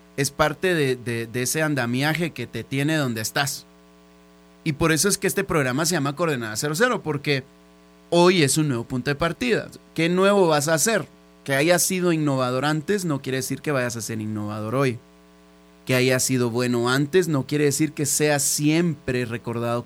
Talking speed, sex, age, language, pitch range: 185 wpm, male, 30-49, Spanish, 115-155 Hz